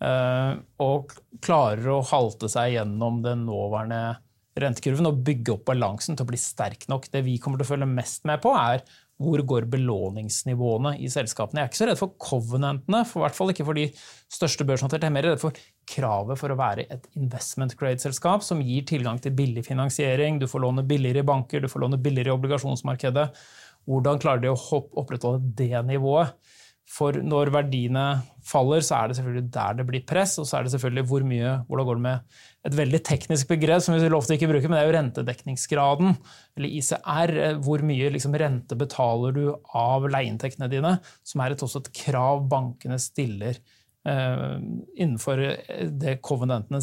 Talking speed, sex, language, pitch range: 180 wpm, male, English, 125-145 Hz